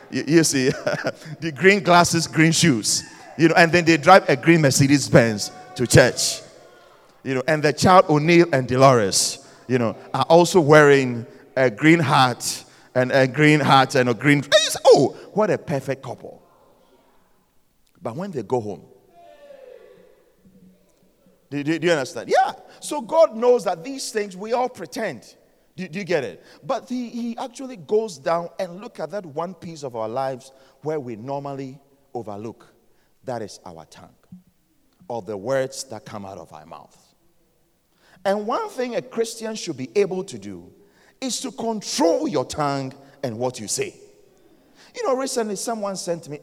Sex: male